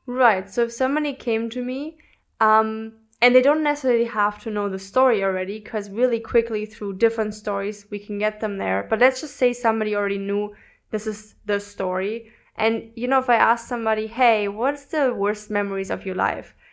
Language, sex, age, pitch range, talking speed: English, female, 20-39, 210-250 Hz, 195 wpm